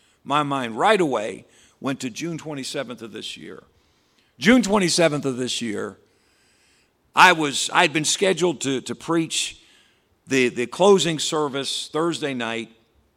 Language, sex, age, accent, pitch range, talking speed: English, male, 50-69, American, 115-150 Hz, 135 wpm